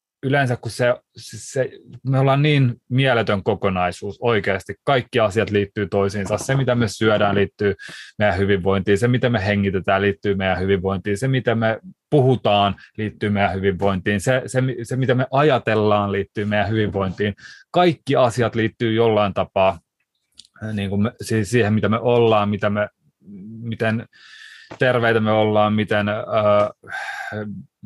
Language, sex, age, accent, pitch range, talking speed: Finnish, male, 30-49, native, 105-130 Hz, 120 wpm